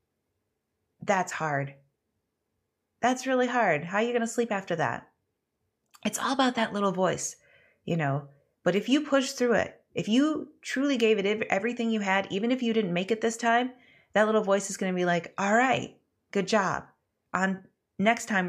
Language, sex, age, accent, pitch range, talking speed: English, female, 30-49, American, 180-245 Hz, 190 wpm